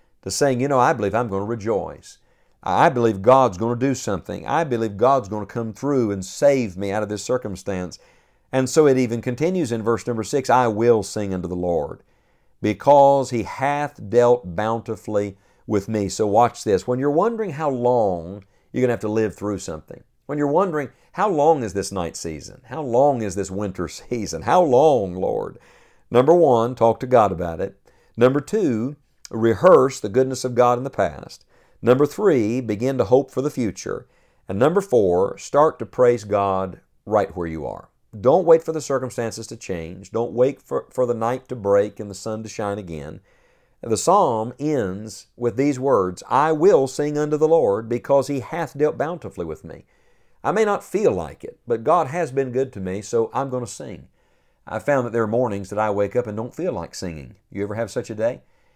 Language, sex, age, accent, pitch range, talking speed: English, male, 50-69, American, 105-135 Hz, 205 wpm